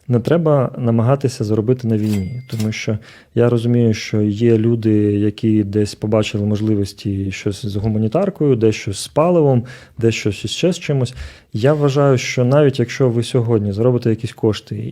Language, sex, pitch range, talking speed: Ukrainian, male, 110-125 Hz, 155 wpm